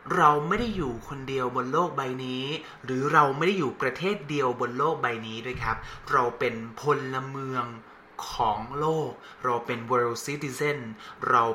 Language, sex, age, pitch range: Thai, male, 20-39, 125-170 Hz